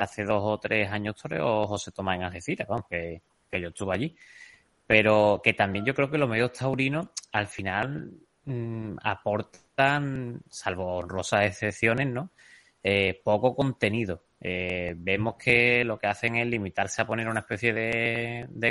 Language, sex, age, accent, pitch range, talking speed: Spanish, male, 20-39, Spanish, 100-120 Hz, 155 wpm